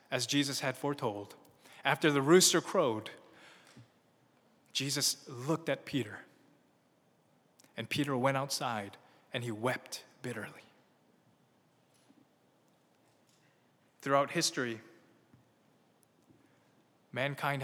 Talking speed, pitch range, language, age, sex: 80 wpm, 145-215 Hz, English, 20-39, male